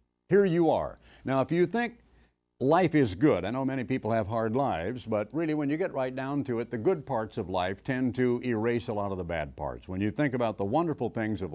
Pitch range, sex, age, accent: 100-145 Hz, male, 60-79, American